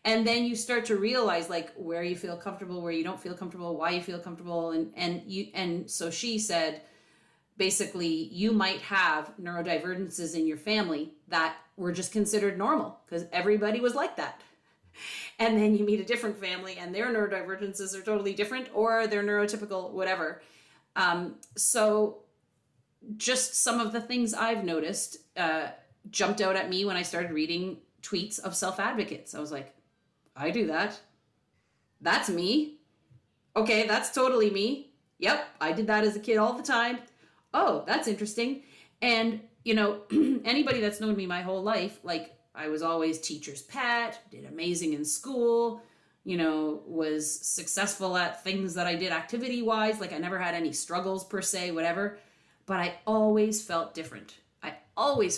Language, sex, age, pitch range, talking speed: English, female, 30-49, 170-220 Hz, 165 wpm